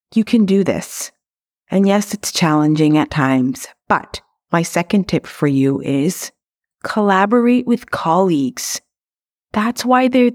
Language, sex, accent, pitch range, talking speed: English, female, American, 165-220 Hz, 135 wpm